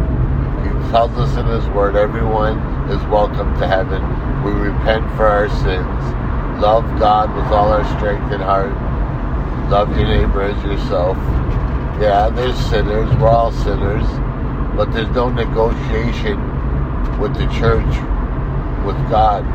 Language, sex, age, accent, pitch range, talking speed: English, male, 60-79, American, 80-120 Hz, 130 wpm